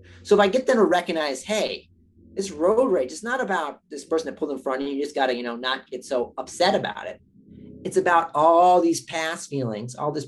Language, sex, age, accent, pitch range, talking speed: English, male, 40-59, American, 135-170 Hz, 245 wpm